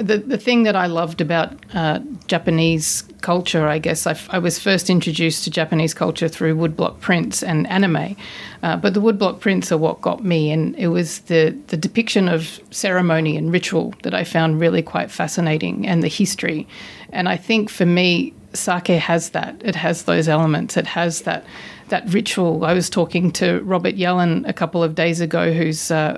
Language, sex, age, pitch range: Japanese, female, 40-59, 160-185 Hz